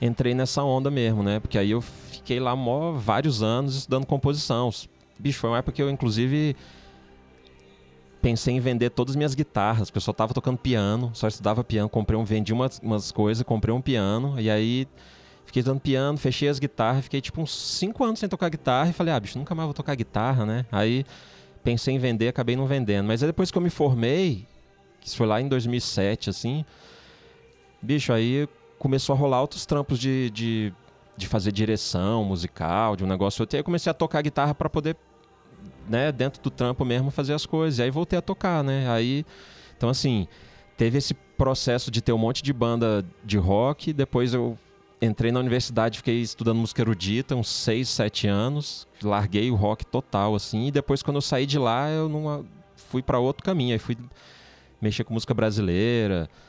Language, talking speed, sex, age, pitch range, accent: Portuguese, 195 wpm, male, 20-39, 110-140 Hz, Brazilian